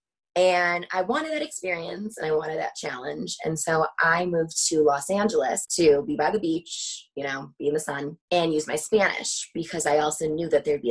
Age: 20-39